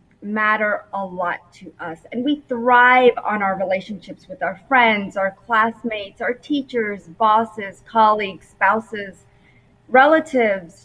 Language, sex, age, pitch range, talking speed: English, female, 30-49, 200-270 Hz, 120 wpm